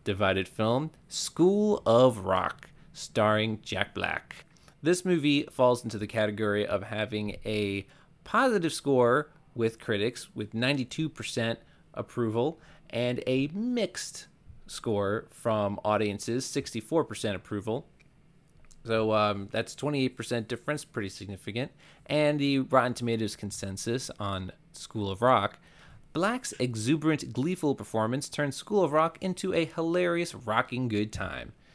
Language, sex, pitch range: English, male, 105-150 Hz